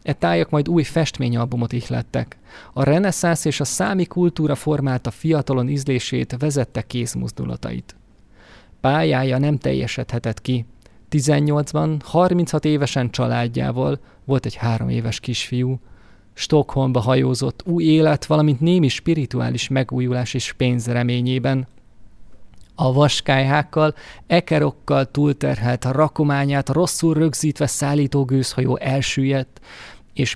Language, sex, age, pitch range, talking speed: Hungarian, male, 20-39, 125-155 Hz, 105 wpm